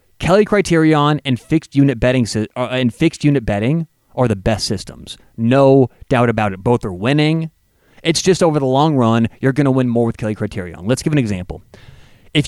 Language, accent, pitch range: English, American, 110-150 Hz